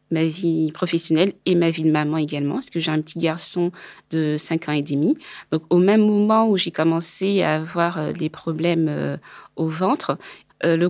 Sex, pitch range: female, 165-195 Hz